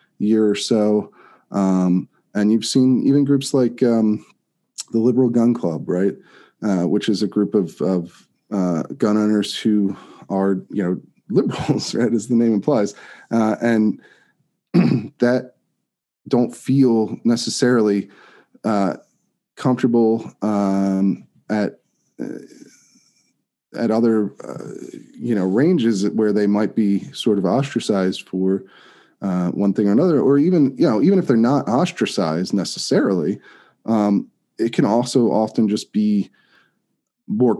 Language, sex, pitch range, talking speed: English, male, 95-115 Hz, 130 wpm